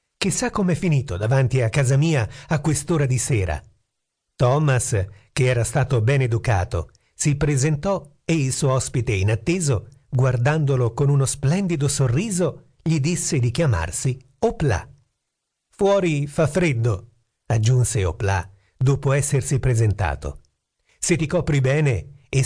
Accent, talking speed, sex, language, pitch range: native, 130 wpm, male, Italian, 115-150 Hz